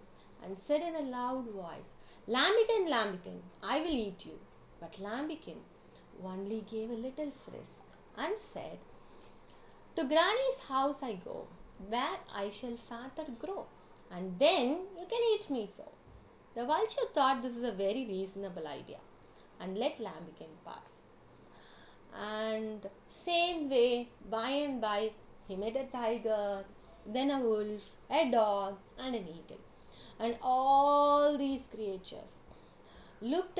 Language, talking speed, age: English, 130 wpm, 30-49